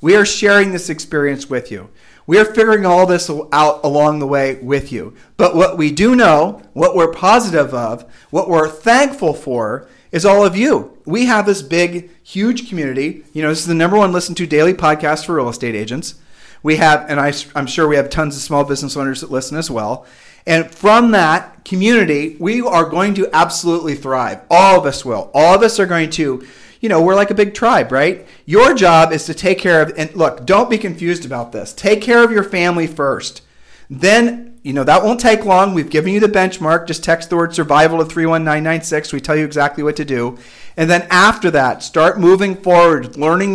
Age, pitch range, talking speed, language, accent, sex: 40-59, 150-190 Hz, 210 wpm, English, American, male